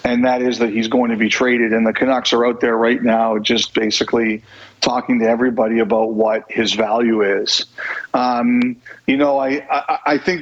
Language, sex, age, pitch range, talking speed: English, male, 40-59, 120-140 Hz, 195 wpm